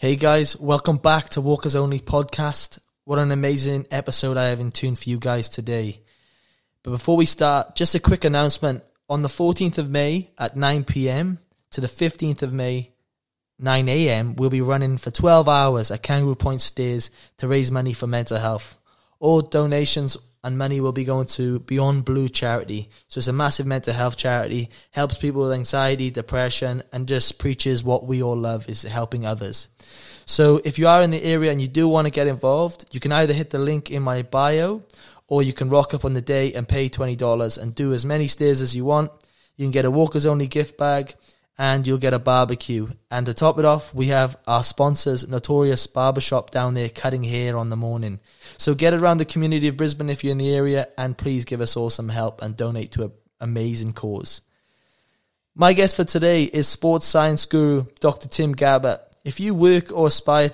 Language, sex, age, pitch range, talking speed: English, male, 20-39, 125-145 Hz, 200 wpm